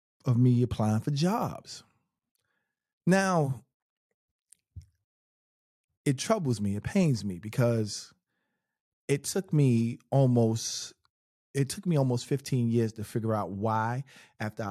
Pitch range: 105-140 Hz